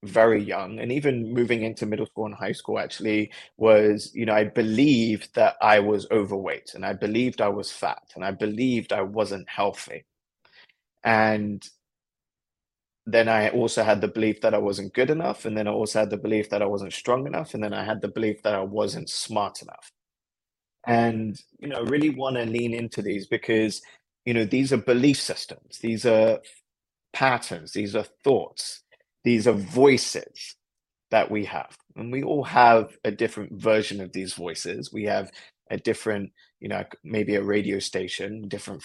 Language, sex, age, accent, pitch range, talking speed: English, male, 20-39, British, 105-115 Hz, 180 wpm